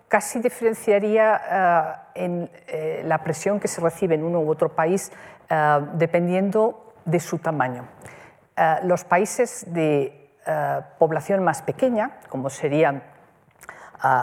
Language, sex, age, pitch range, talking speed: Spanish, female, 50-69, 150-195 Hz, 130 wpm